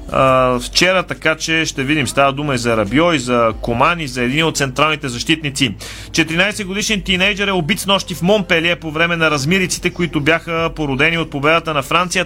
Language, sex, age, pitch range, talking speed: Bulgarian, male, 30-49, 135-170 Hz, 190 wpm